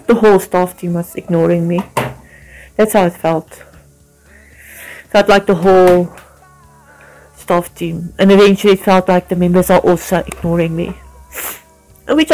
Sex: female